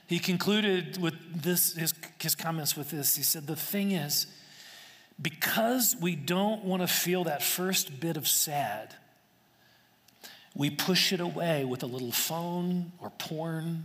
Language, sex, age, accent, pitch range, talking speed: English, male, 40-59, American, 150-195 Hz, 150 wpm